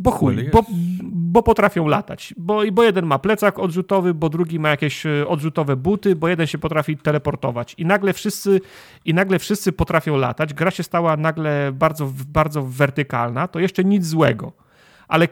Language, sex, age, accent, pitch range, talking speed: Polish, male, 40-59, native, 145-185 Hz, 170 wpm